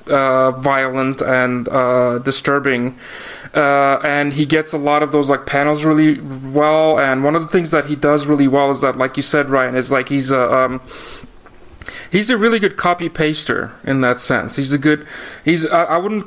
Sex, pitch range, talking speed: male, 135-155 Hz, 195 wpm